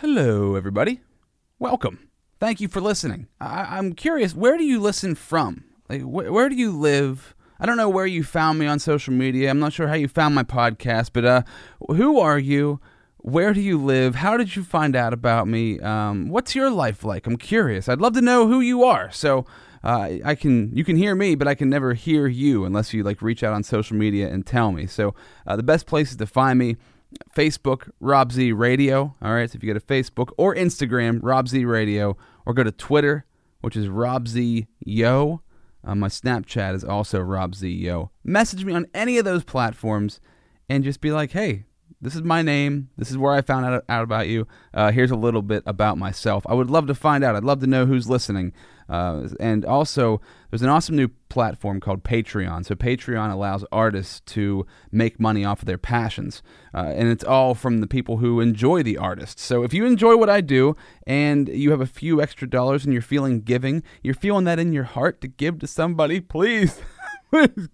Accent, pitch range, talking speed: American, 110-155 Hz, 215 wpm